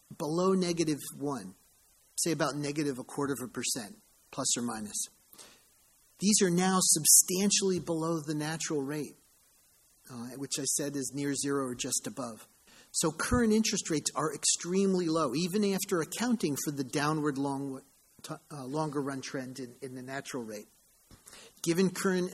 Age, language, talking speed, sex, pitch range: 40-59, English, 150 wpm, male, 140-175 Hz